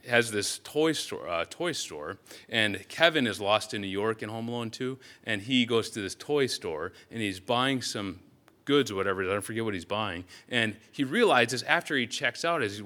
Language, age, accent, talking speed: English, 30-49, American, 220 wpm